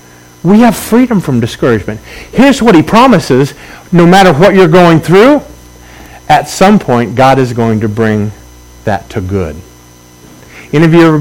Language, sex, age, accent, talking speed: English, male, 50-69, American, 160 wpm